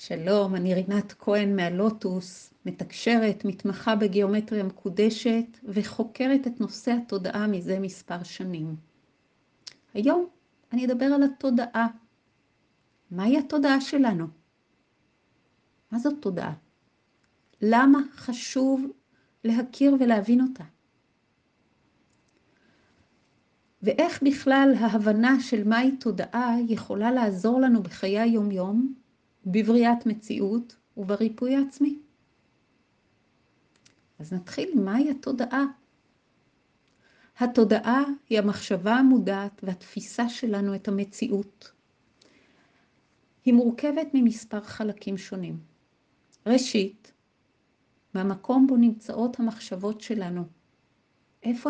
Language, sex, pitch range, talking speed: Hebrew, female, 200-255 Hz, 80 wpm